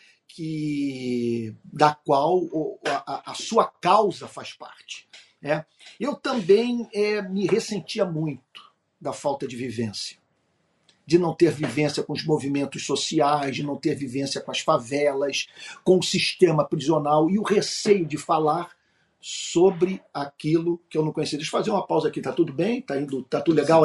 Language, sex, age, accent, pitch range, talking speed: Portuguese, male, 50-69, Brazilian, 150-205 Hz, 165 wpm